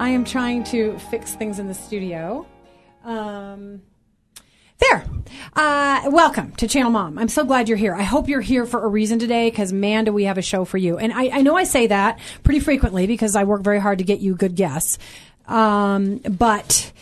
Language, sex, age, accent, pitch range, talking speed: English, female, 30-49, American, 195-245 Hz, 210 wpm